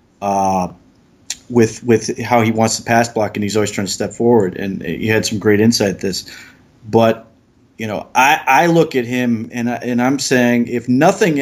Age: 30-49